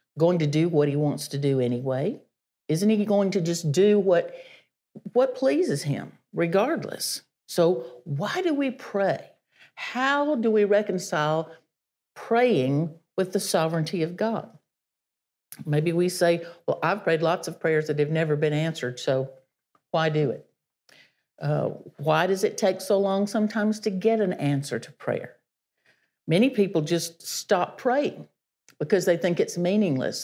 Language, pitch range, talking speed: English, 150-195 Hz, 155 wpm